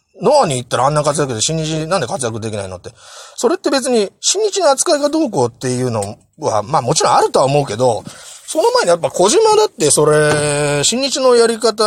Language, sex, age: Japanese, male, 30-49